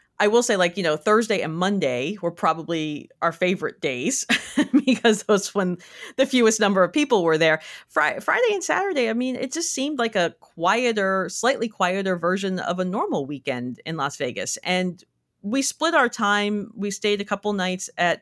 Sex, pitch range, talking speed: female, 155-235 Hz, 190 wpm